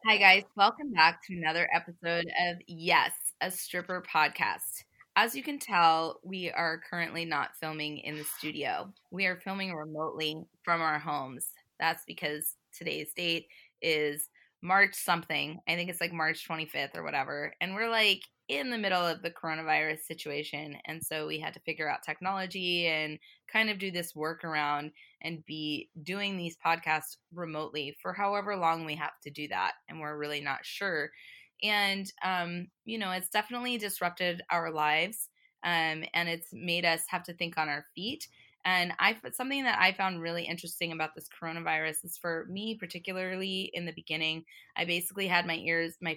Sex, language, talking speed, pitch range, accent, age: female, English, 170 wpm, 155-190 Hz, American, 20-39